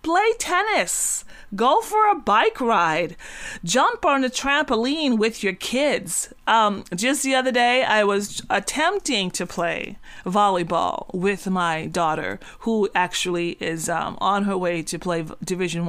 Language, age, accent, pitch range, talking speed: English, 30-49, American, 200-270 Hz, 145 wpm